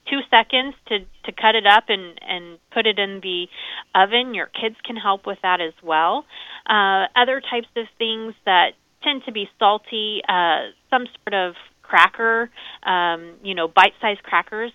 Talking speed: 170 wpm